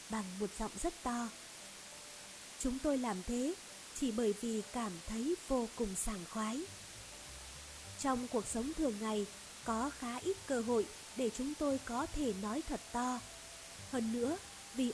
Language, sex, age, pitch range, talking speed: Vietnamese, female, 20-39, 225-275 Hz, 155 wpm